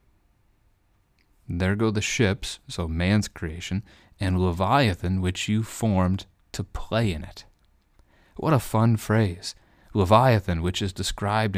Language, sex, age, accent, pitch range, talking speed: English, male, 30-49, American, 85-105 Hz, 125 wpm